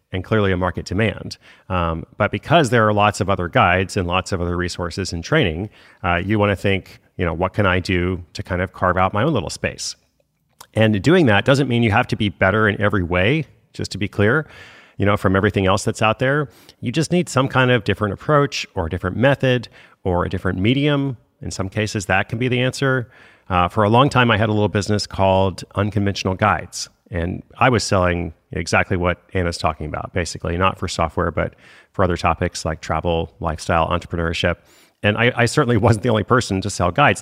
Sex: male